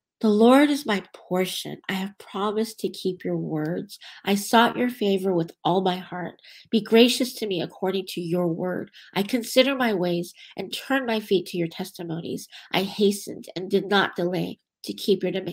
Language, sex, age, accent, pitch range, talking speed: English, female, 50-69, American, 175-225 Hz, 185 wpm